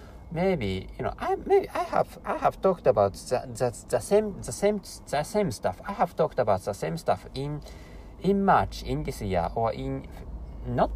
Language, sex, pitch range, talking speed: English, male, 100-165 Hz, 195 wpm